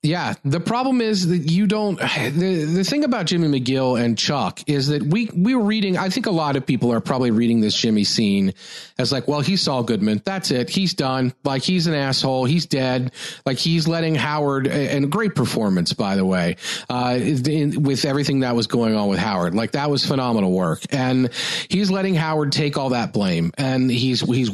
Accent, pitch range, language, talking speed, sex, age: American, 130-175 Hz, English, 210 wpm, male, 40-59